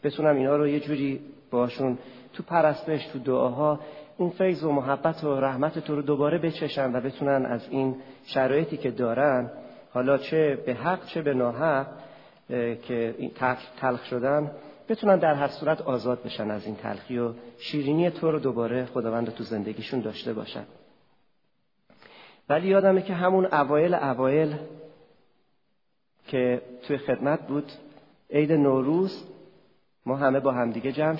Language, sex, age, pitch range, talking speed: Persian, male, 40-59, 125-155 Hz, 140 wpm